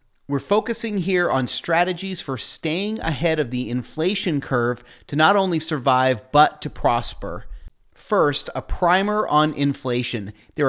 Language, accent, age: English, American, 30-49